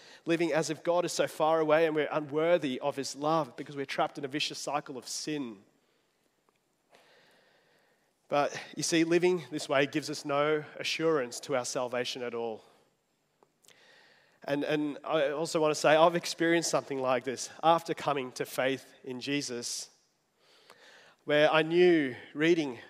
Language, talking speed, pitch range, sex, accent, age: English, 155 wpm, 140-170 Hz, male, Australian, 30-49